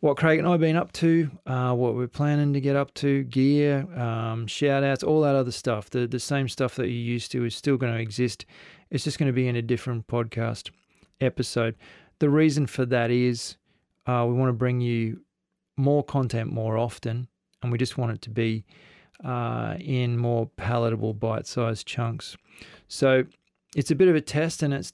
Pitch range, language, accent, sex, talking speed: 115-140 Hz, English, Australian, male, 200 wpm